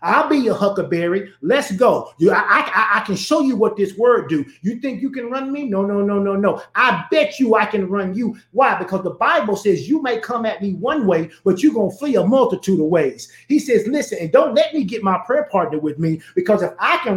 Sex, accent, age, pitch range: male, American, 30-49, 195-255 Hz